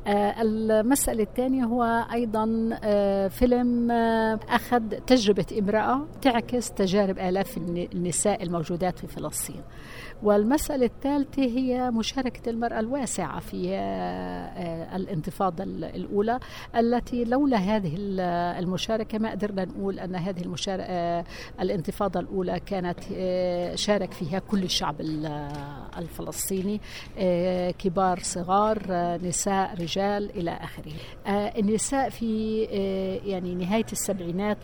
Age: 60-79